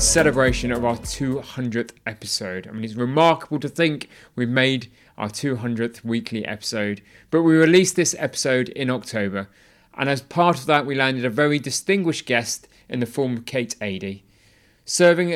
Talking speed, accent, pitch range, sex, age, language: 165 wpm, British, 110-140 Hz, male, 30-49, English